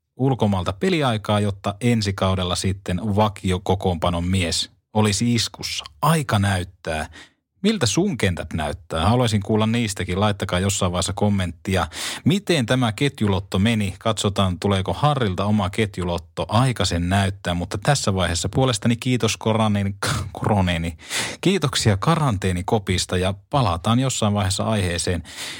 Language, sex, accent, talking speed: Finnish, male, native, 115 wpm